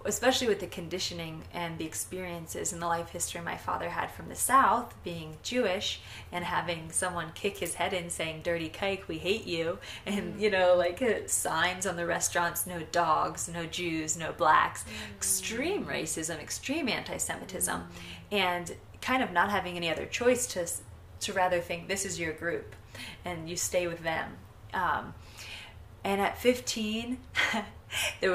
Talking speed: 160 wpm